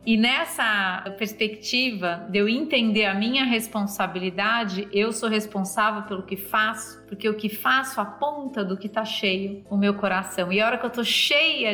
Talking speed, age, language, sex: 175 wpm, 30-49, Portuguese, female